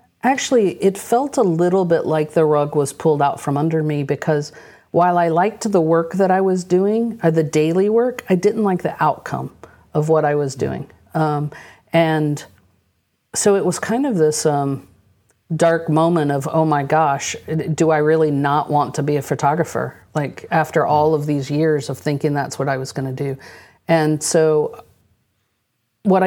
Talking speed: 185 wpm